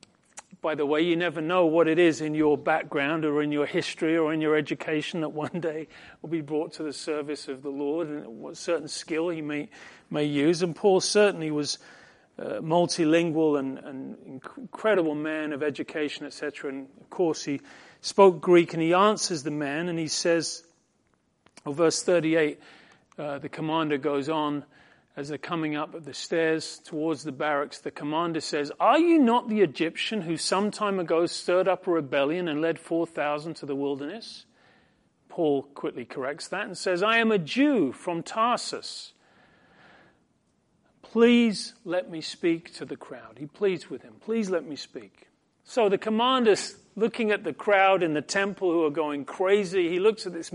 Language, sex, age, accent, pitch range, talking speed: English, male, 40-59, British, 150-195 Hz, 180 wpm